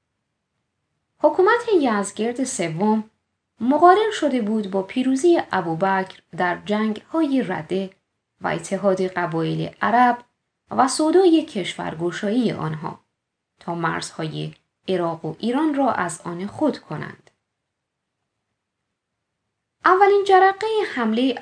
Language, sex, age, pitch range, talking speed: Persian, female, 20-39, 185-285 Hz, 100 wpm